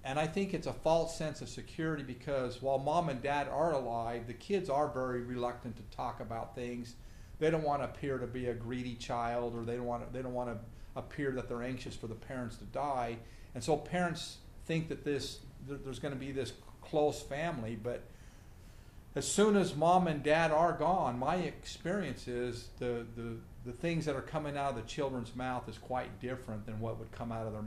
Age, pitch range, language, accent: 50-69, 115-145 Hz, English, American